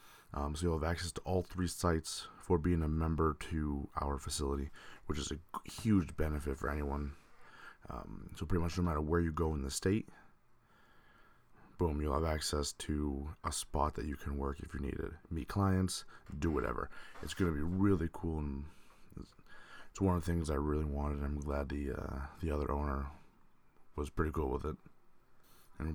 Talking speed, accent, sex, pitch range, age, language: 190 wpm, American, male, 75-90 Hz, 30-49, English